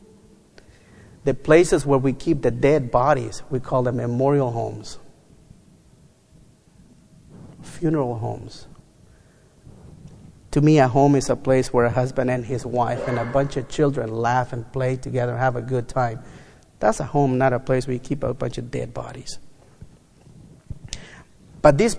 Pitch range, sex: 125-150 Hz, male